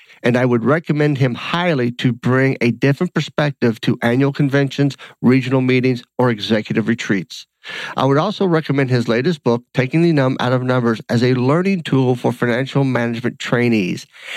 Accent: American